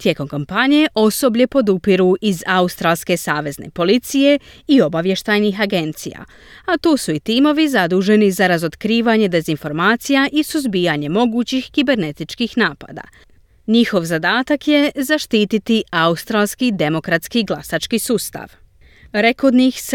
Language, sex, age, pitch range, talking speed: Croatian, female, 30-49, 165-255 Hz, 100 wpm